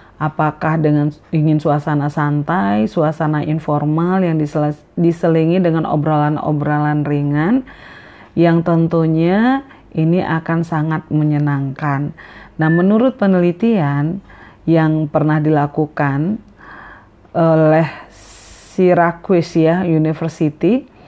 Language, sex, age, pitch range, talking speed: Indonesian, female, 40-59, 150-175 Hz, 85 wpm